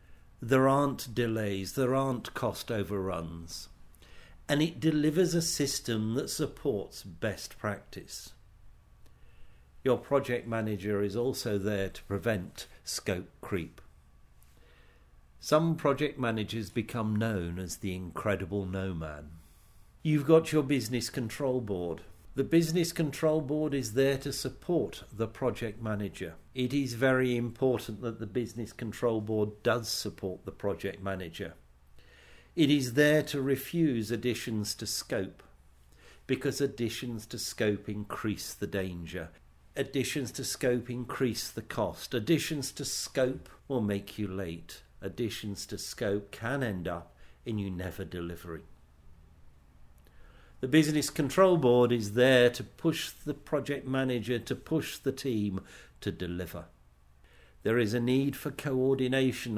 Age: 50-69